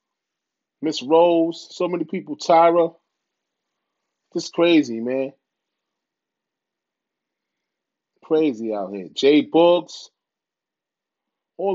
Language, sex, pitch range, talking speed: English, male, 150-180 Hz, 75 wpm